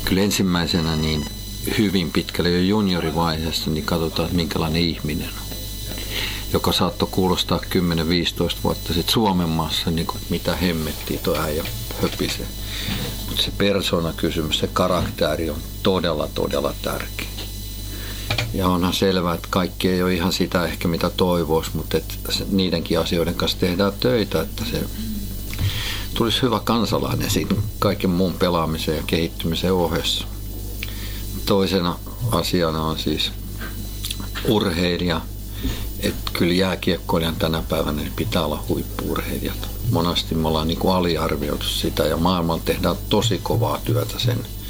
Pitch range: 85-105 Hz